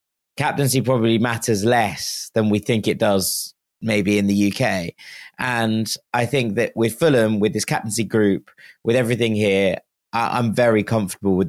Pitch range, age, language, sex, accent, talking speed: 105-120 Hz, 20-39, English, male, British, 155 wpm